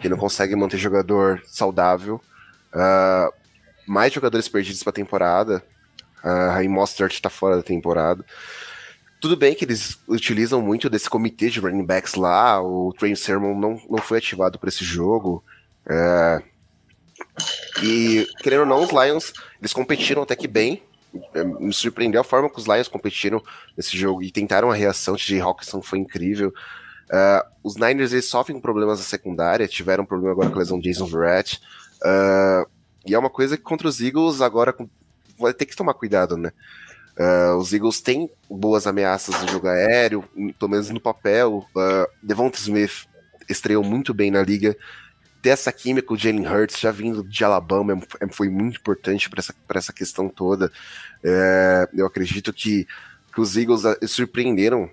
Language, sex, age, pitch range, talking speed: English, male, 20-39, 95-115 Hz, 165 wpm